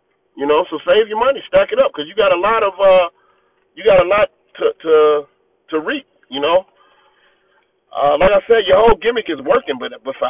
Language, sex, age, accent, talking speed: English, male, 30-49, American, 220 wpm